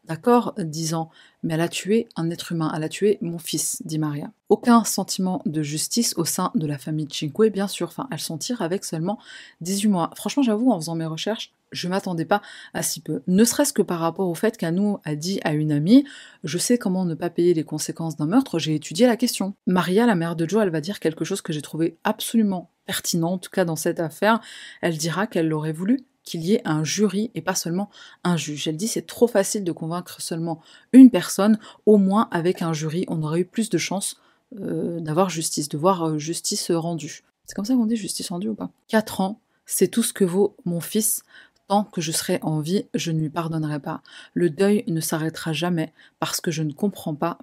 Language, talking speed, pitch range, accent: French, 230 wpm, 160-215 Hz, French